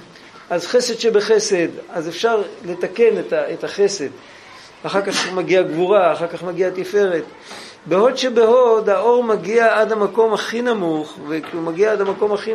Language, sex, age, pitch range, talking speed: Hebrew, male, 50-69, 160-230 Hz, 140 wpm